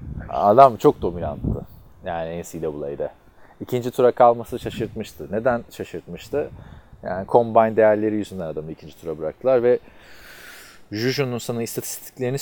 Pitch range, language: 100-135 Hz, Turkish